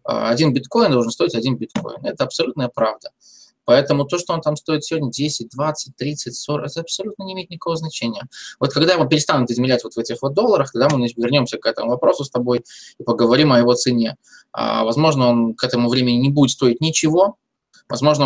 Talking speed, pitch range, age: 195 wpm, 120-150 Hz, 20-39